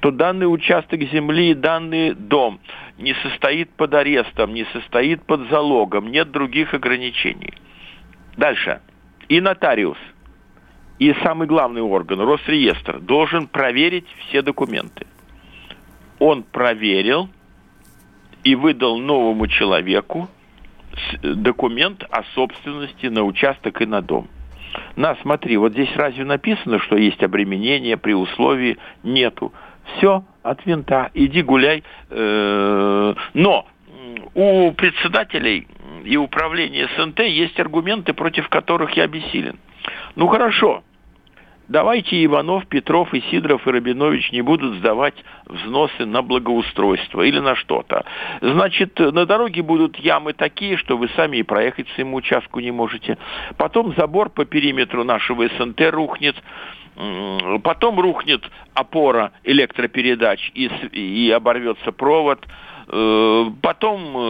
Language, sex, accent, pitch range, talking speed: Russian, male, native, 115-165 Hz, 110 wpm